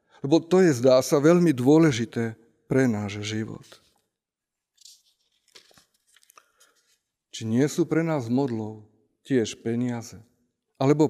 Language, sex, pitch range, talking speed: Slovak, male, 110-155 Hz, 105 wpm